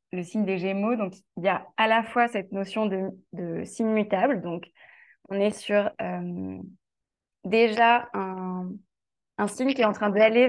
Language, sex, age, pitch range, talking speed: French, female, 20-39, 190-230 Hz, 175 wpm